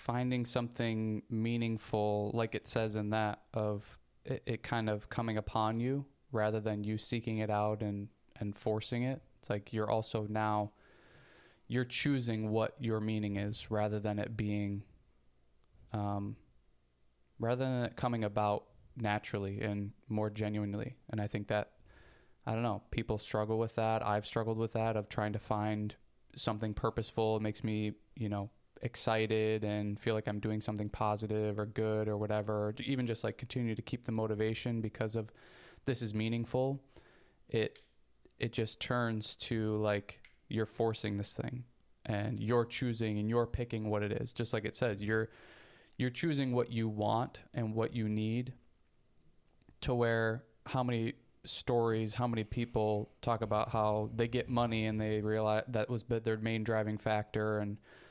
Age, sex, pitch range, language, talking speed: 20-39, male, 105-115 Hz, English, 165 wpm